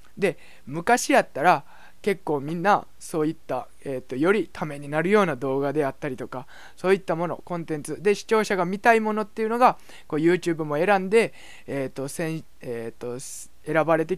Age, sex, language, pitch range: 20-39, male, Japanese, 150-205 Hz